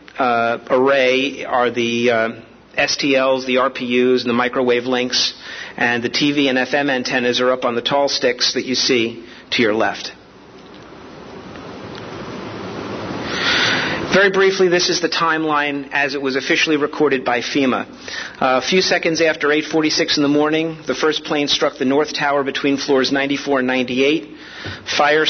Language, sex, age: English, male, 40-59